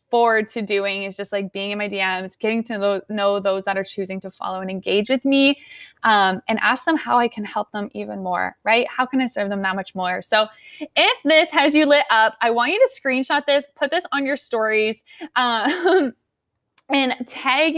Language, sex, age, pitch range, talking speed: English, female, 10-29, 220-290 Hz, 215 wpm